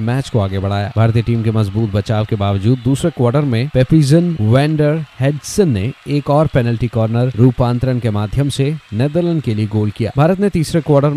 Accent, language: native, Hindi